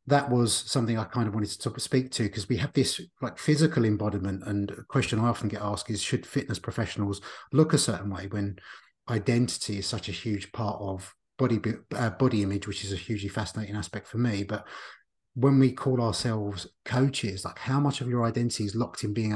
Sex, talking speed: male, 210 wpm